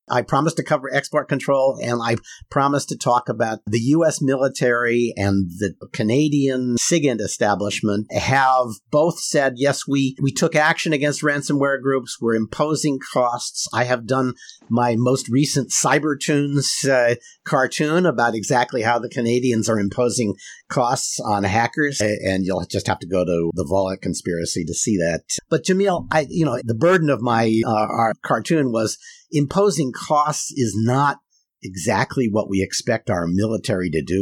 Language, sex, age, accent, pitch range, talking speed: English, male, 50-69, American, 100-145 Hz, 160 wpm